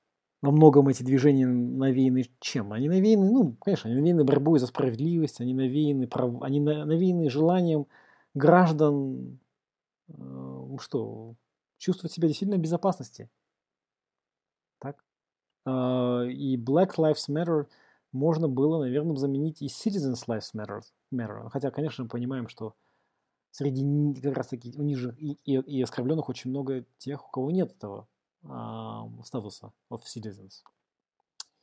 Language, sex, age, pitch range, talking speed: Russian, male, 20-39, 120-155 Hz, 125 wpm